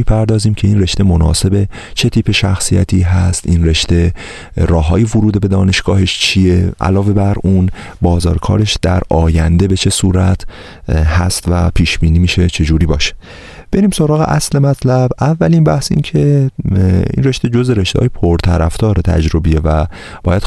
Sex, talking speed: male, 145 wpm